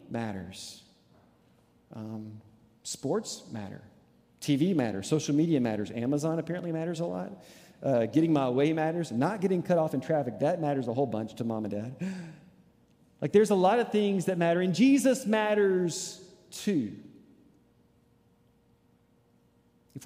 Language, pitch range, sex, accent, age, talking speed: English, 130-195 Hz, male, American, 40-59, 140 wpm